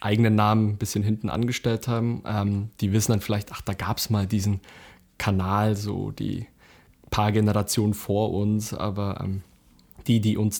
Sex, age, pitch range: male, 20-39, 105-115 Hz